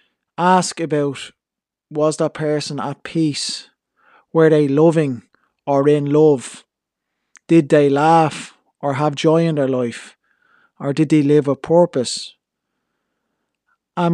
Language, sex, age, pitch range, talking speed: English, male, 20-39, 140-165 Hz, 125 wpm